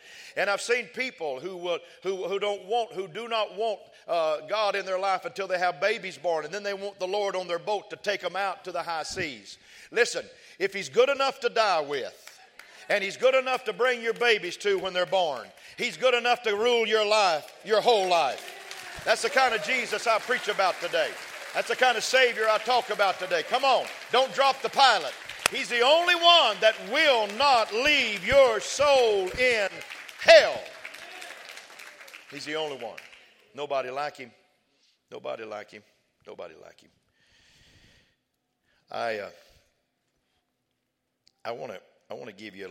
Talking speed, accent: 180 wpm, American